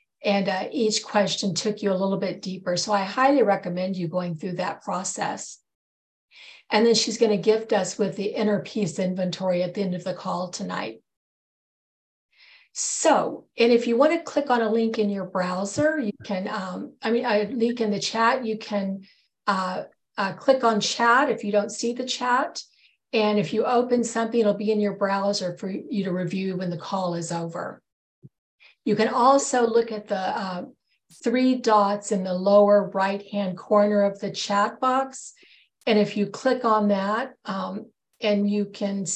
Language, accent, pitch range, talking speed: English, American, 195-235 Hz, 185 wpm